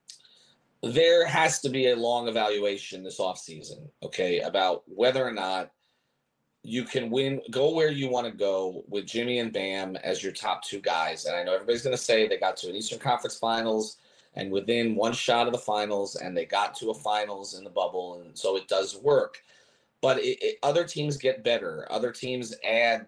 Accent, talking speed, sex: American, 205 wpm, male